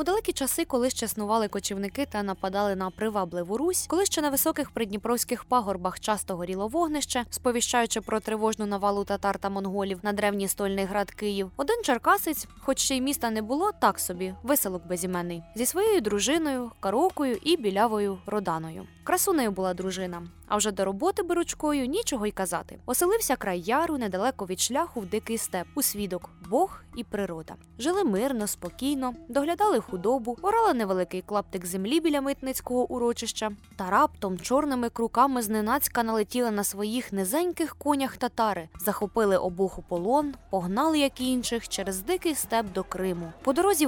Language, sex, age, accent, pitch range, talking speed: Ukrainian, female, 20-39, native, 200-280 Hz, 155 wpm